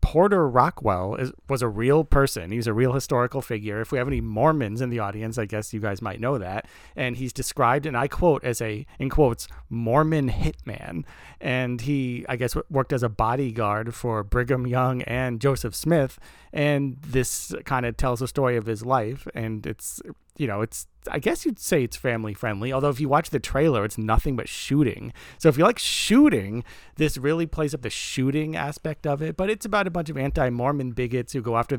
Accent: American